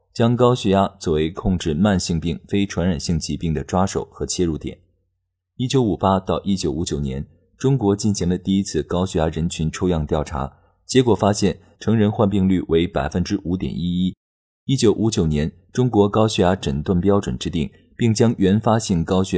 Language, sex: Chinese, male